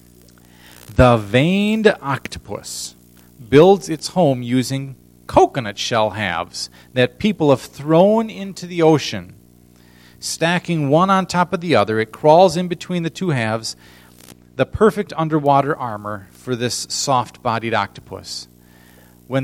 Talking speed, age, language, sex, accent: 125 wpm, 40-59, English, male, American